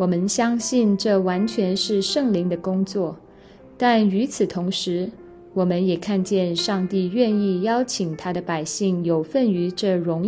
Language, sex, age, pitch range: Chinese, female, 20-39, 180-225 Hz